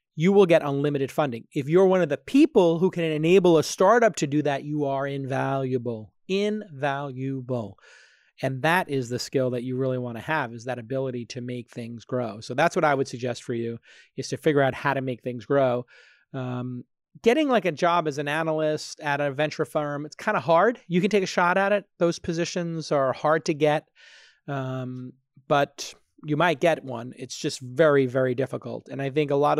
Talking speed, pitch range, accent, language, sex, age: 205 wpm, 135-160 Hz, American, English, male, 30-49